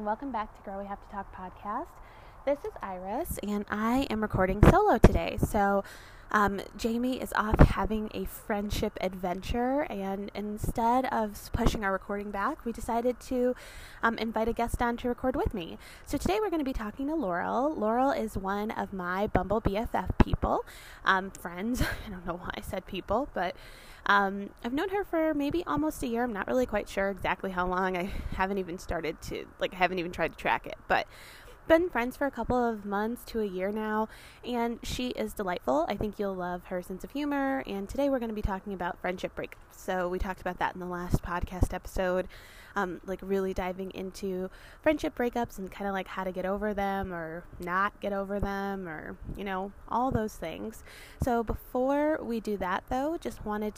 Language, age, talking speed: English, 20-39, 205 wpm